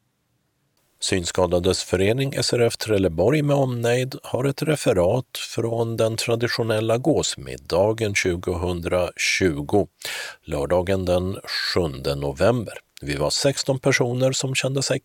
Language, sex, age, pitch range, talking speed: Swedish, male, 50-69, 95-135 Hz, 100 wpm